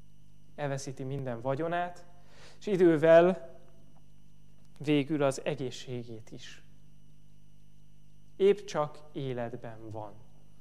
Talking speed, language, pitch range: 75 wpm, Hungarian, 135-165 Hz